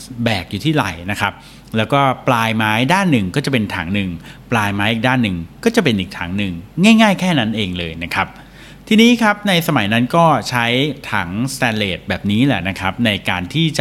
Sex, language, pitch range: male, Thai, 100-140 Hz